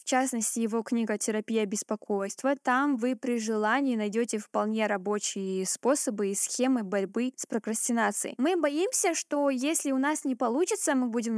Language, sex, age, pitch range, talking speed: Russian, female, 10-29, 225-275 Hz, 155 wpm